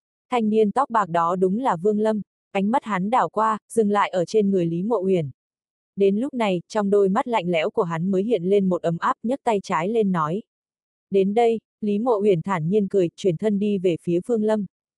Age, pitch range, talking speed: 20-39, 185-220 Hz, 230 wpm